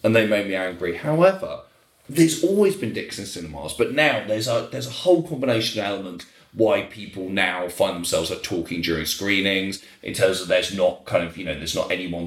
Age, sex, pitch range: 20-39, male, 95-145 Hz